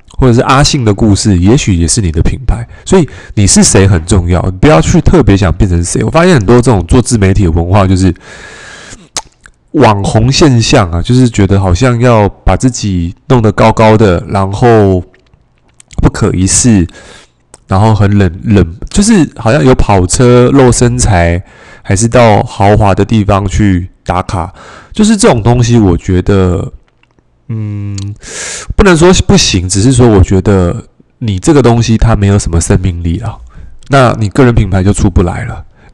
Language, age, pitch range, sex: Chinese, 20-39, 95-125 Hz, male